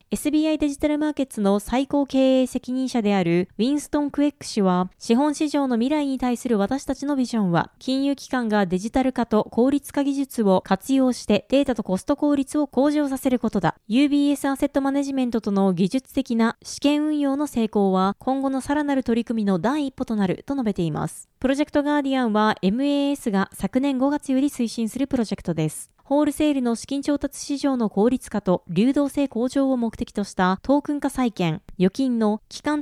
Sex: female